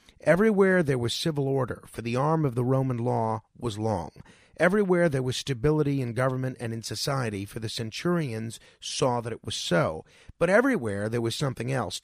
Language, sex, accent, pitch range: English, male, American, 115-150 Hz